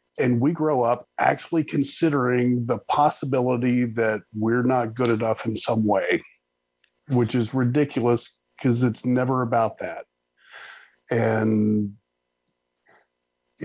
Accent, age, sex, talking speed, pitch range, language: American, 50-69, male, 115 wpm, 110-140 Hz, English